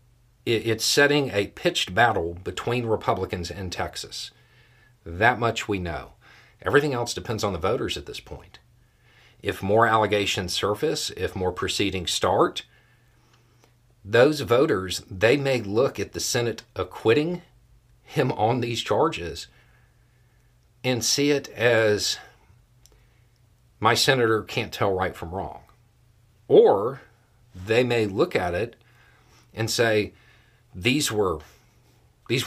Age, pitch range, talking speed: 50-69, 105-120 Hz, 120 wpm